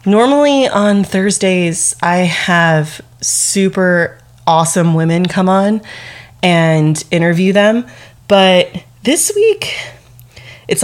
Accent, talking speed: American, 95 wpm